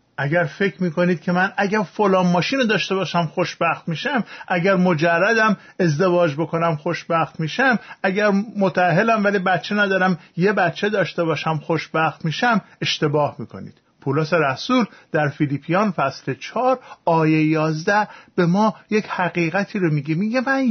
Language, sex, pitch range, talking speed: Persian, male, 160-210 Hz, 135 wpm